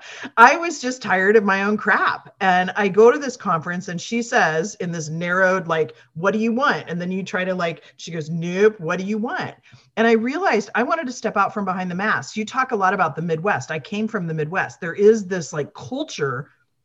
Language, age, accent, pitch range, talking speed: English, 40-59, American, 160-225 Hz, 240 wpm